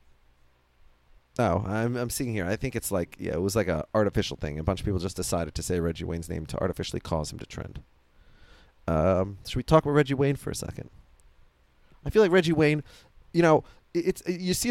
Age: 30-49